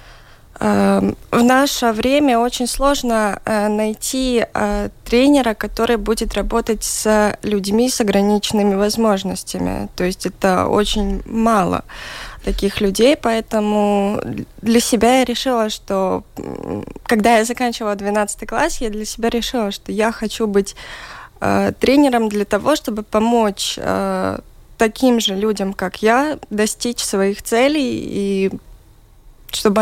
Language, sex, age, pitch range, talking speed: Russian, female, 20-39, 195-235 Hz, 115 wpm